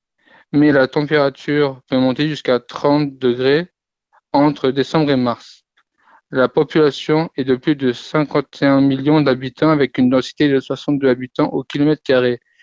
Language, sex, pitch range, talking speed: French, male, 130-150 Hz, 145 wpm